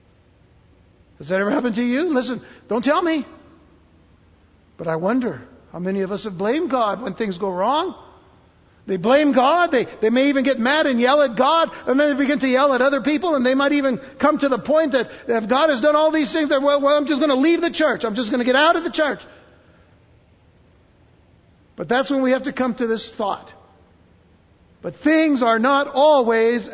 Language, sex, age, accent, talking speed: English, male, 60-79, American, 215 wpm